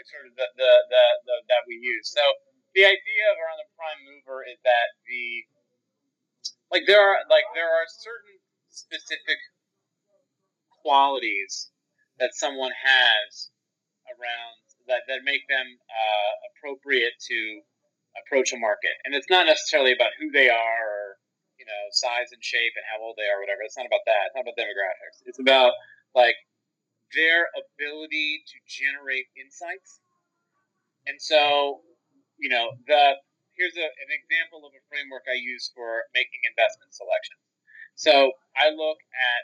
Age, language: 30-49, English